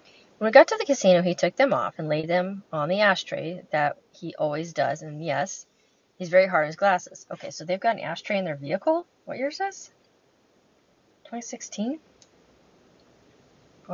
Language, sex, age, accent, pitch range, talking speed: English, female, 30-49, American, 170-230 Hz, 180 wpm